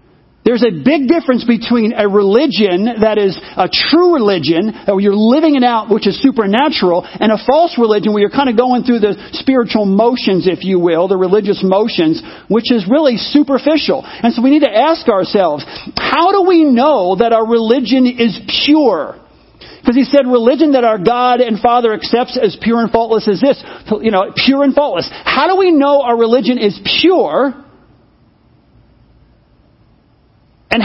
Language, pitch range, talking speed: English, 220-285 Hz, 175 wpm